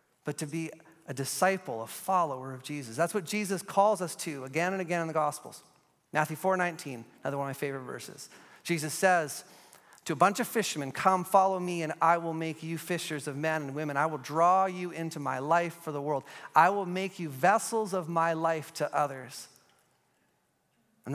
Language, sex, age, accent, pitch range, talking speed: English, male, 30-49, American, 145-185 Hz, 200 wpm